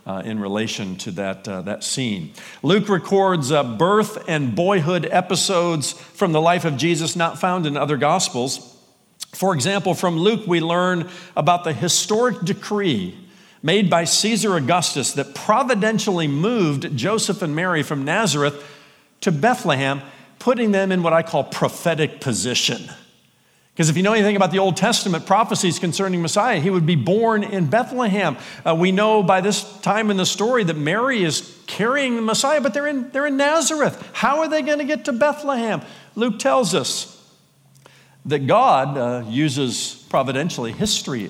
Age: 50-69